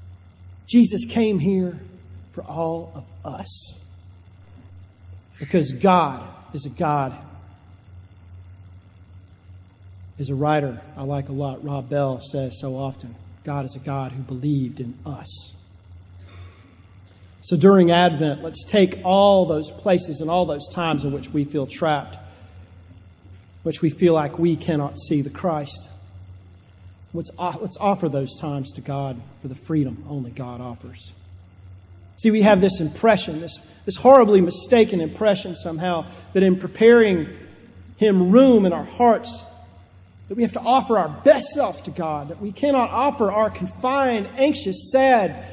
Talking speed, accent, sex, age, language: 140 wpm, American, male, 40-59, English